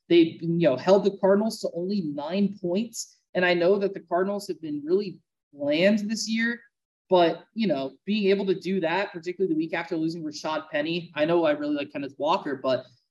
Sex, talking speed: male, 205 wpm